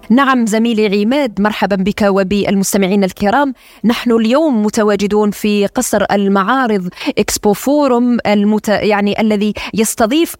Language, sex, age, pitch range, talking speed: Arabic, female, 20-39, 205-245 Hz, 110 wpm